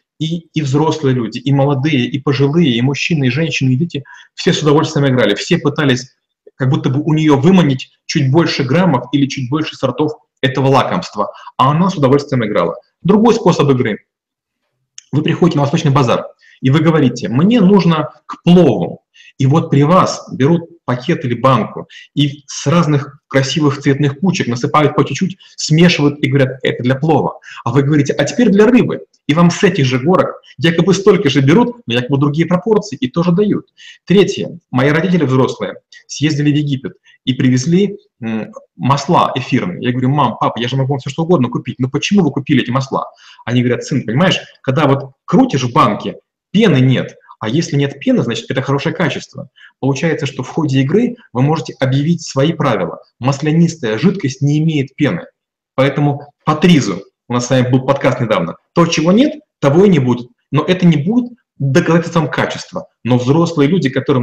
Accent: native